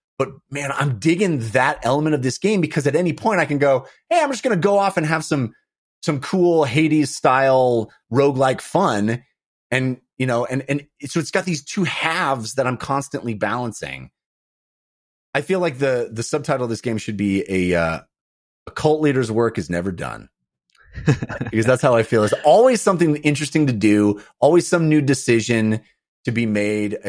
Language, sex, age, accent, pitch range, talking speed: English, male, 30-49, American, 110-150 Hz, 205 wpm